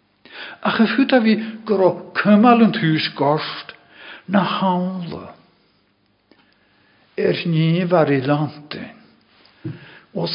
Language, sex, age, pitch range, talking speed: English, male, 60-79, 160-215 Hz, 65 wpm